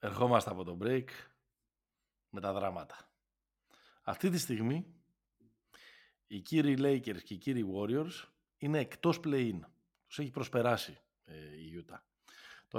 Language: Greek